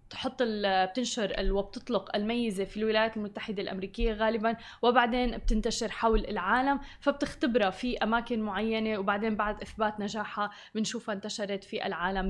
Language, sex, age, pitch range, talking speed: Arabic, female, 20-39, 220-270 Hz, 130 wpm